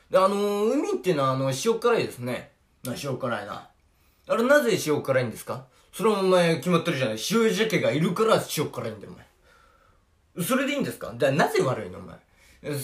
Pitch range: 130-195 Hz